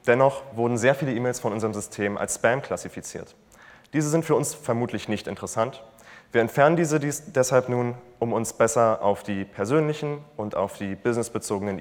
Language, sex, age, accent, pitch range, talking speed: German, male, 20-39, German, 105-130 Hz, 170 wpm